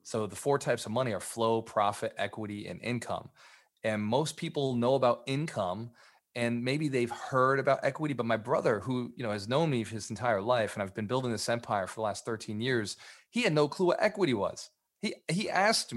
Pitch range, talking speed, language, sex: 110-130 Hz, 220 wpm, English, male